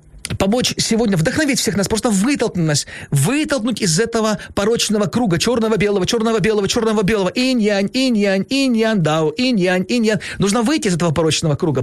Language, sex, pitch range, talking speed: Ukrainian, male, 160-255 Hz, 140 wpm